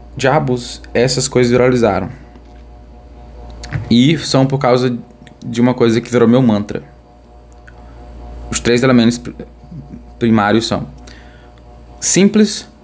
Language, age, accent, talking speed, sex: Portuguese, 20-39, Brazilian, 100 wpm, male